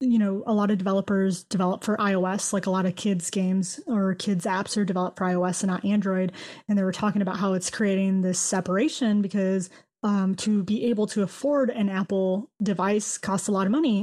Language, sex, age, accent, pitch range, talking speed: English, female, 20-39, American, 195-225 Hz, 215 wpm